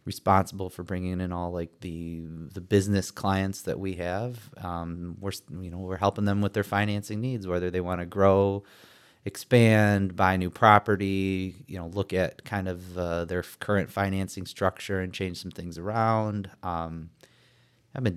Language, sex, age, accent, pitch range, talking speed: English, male, 30-49, American, 90-105 Hz, 170 wpm